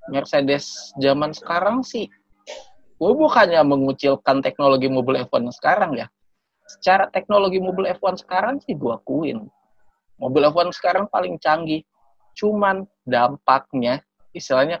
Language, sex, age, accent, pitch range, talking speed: Indonesian, male, 20-39, native, 130-175 Hz, 115 wpm